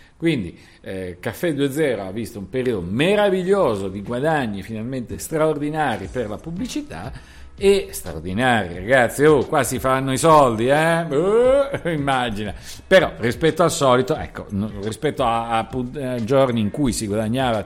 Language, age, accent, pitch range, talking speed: Italian, 50-69, native, 105-155 Hz, 145 wpm